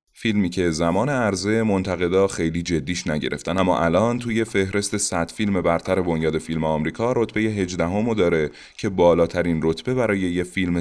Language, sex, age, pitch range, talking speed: Persian, male, 30-49, 80-105 Hz, 155 wpm